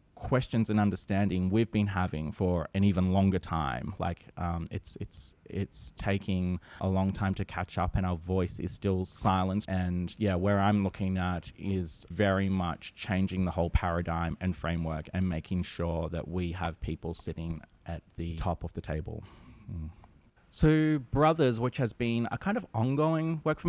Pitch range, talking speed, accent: 90-105 Hz, 175 wpm, Australian